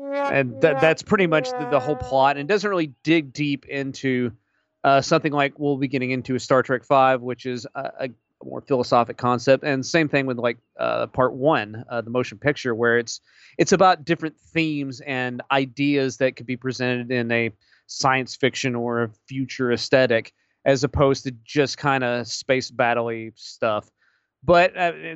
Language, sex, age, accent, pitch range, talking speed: English, male, 30-49, American, 125-150 Hz, 185 wpm